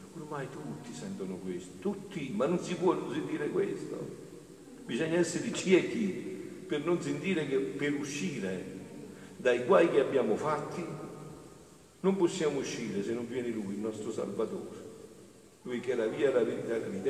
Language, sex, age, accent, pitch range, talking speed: Italian, male, 50-69, native, 170-235 Hz, 145 wpm